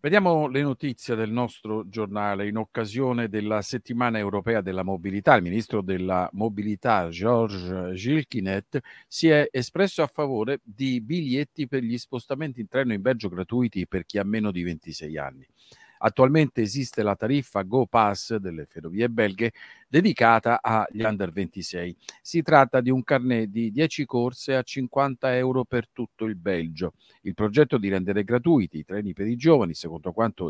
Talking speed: 155 wpm